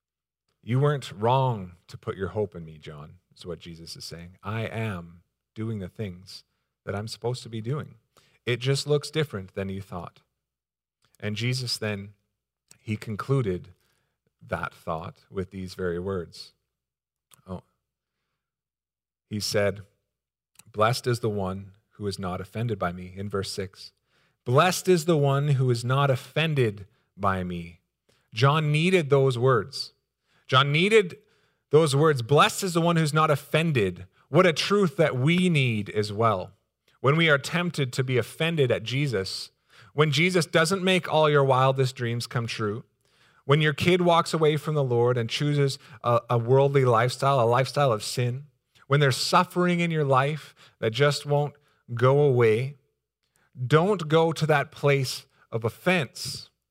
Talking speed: 155 wpm